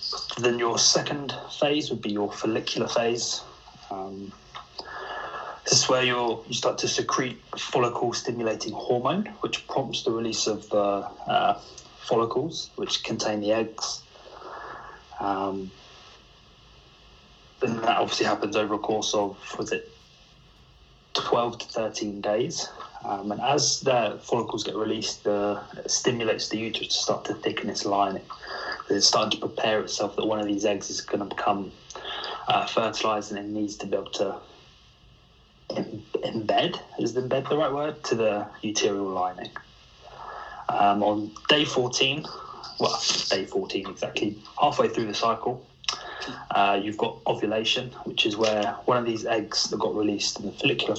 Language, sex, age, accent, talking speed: English, male, 30-49, British, 150 wpm